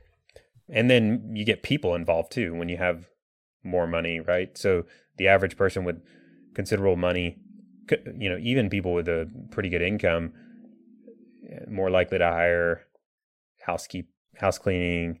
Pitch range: 85-100 Hz